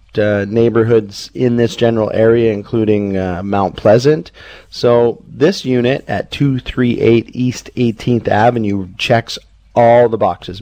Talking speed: 125 wpm